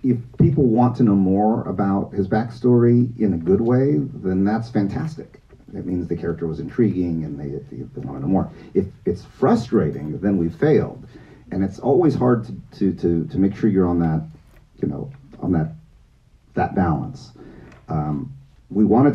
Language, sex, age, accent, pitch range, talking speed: English, male, 40-59, American, 85-125 Hz, 175 wpm